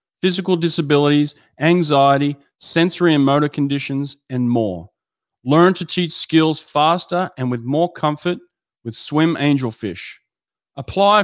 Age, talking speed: 30-49, 115 wpm